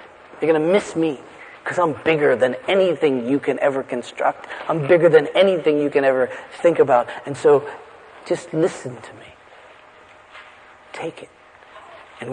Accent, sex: American, male